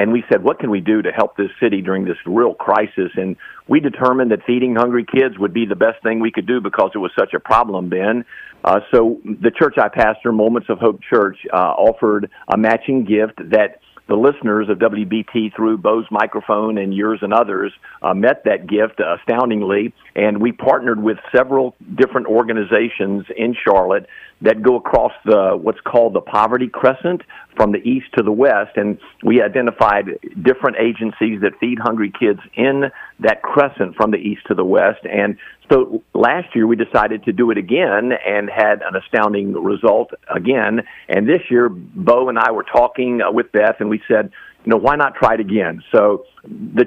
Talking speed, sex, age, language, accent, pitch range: 195 wpm, male, 50-69, English, American, 105-125 Hz